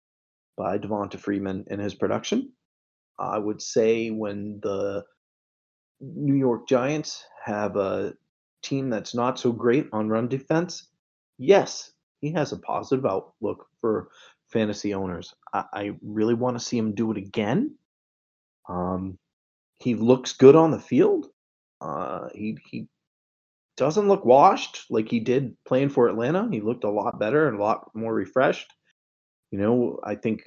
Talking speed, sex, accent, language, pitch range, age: 150 wpm, male, American, English, 100-125 Hz, 30-49